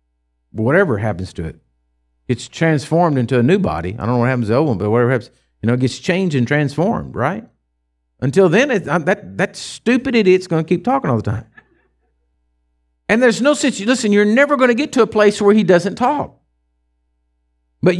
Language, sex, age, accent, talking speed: English, male, 50-69, American, 205 wpm